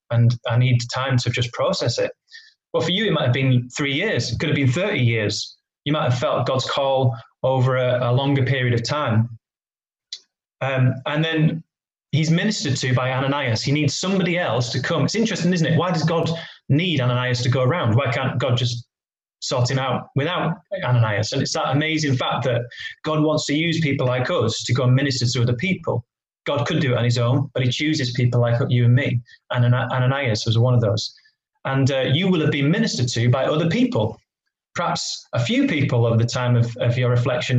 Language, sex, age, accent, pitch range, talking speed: English, male, 20-39, British, 125-155 Hz, 215 wpm